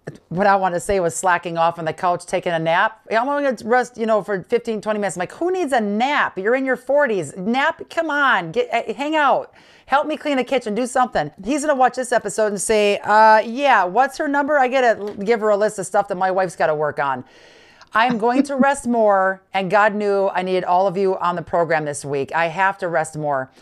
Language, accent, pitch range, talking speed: English, American, 170-225 Hz, 250 wpm